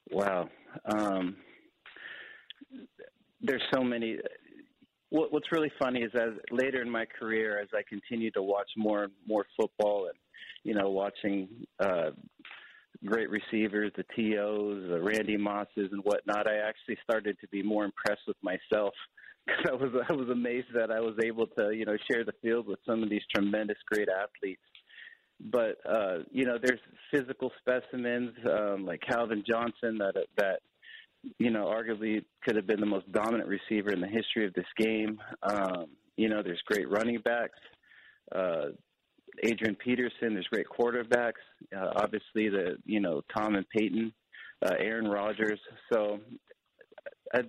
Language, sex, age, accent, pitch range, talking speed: English, male, 40-59, American, 105-125 Hz, 155 wpm